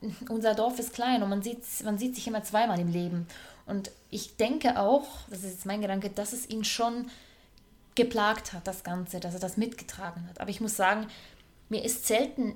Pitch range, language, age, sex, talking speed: 190-225 Hz, German, 20-39, female, 200 wpm